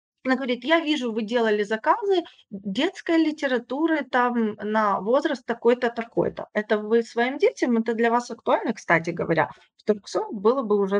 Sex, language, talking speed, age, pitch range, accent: female, Ukrainian, 160 wpm, 30-49, 200-255 Hz, native